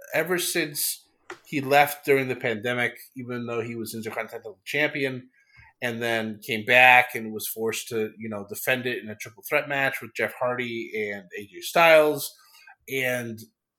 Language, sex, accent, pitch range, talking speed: English, male, American, 115-160 Hz, 160 wpm